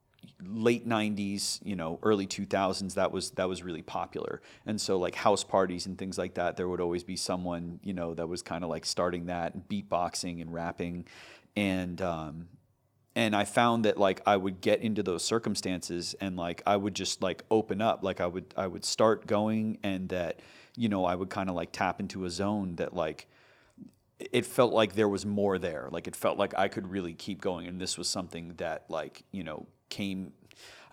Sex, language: male, Dutch